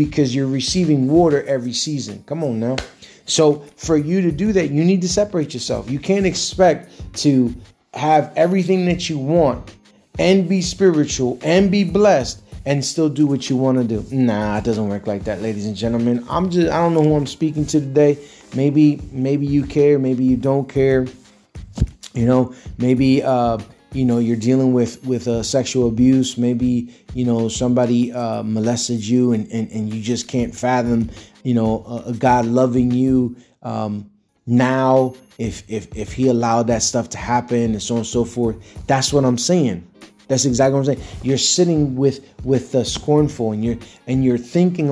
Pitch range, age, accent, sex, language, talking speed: 120-145 Hz, 30-49, American, male, English, 190 wpm